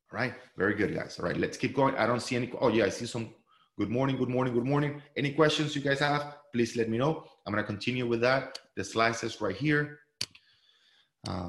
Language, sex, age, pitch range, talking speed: English, male, 30-49, 95-125 Hz, 230 wpm